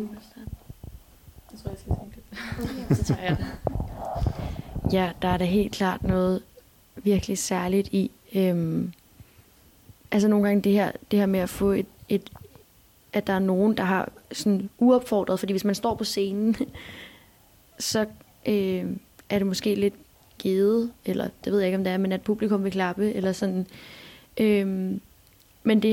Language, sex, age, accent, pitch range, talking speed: Danish, female, 20-39, native, 180-205 Hz, 145 wpm